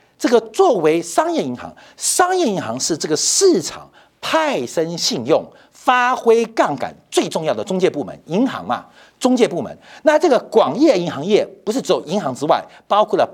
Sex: male